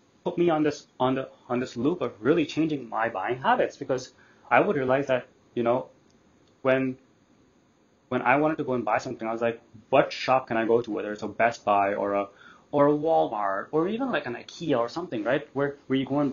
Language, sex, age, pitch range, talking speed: English, male, 20-39, 125-160 Hz, 230 wpm